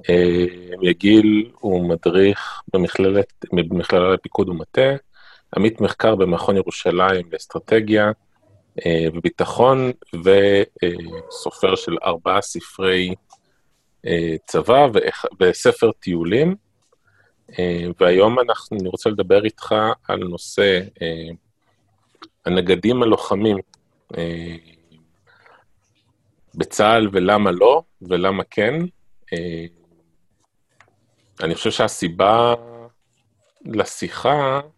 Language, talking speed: Hebrew, 80 wpm